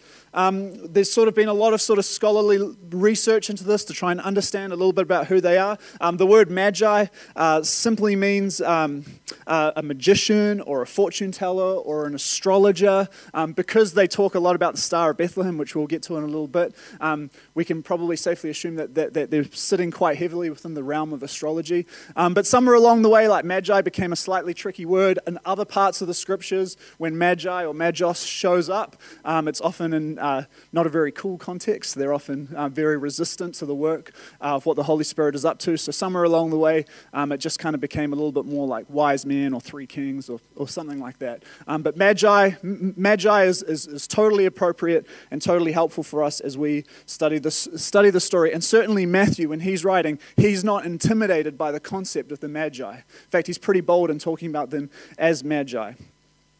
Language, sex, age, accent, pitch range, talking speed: English, male, 20-39, Australian, 155-195 Hz, 215 wpm